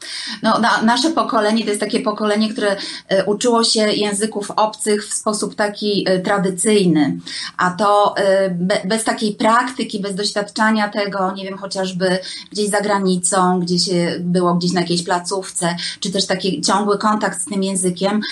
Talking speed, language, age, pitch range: 145 wpm, Polish, 30-49, 185-230 Hz